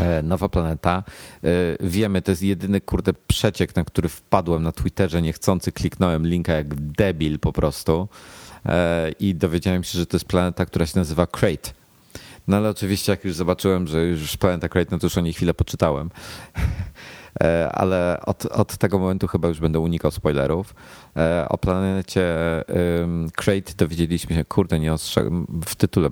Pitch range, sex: 80-95 Hz, male